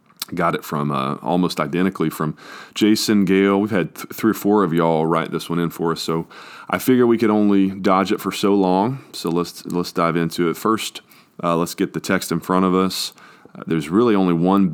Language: English